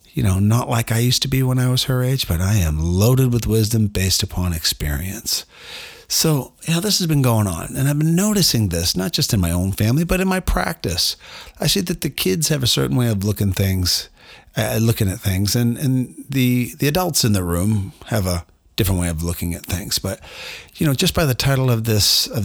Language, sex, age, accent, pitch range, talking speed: English, male, 40-59, American, 95-130 Hz, 235 wpm